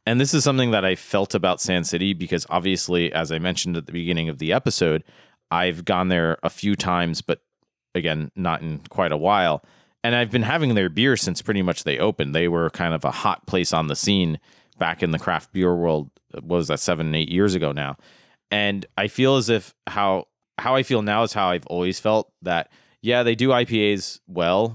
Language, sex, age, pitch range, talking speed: English, male, 30-49, 85-105 Hz, 220 wpm